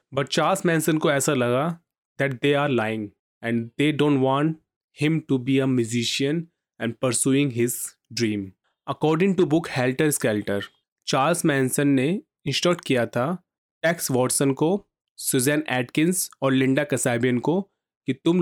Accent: native